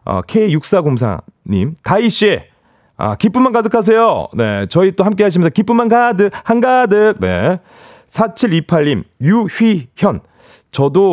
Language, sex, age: Korean, male, 40-59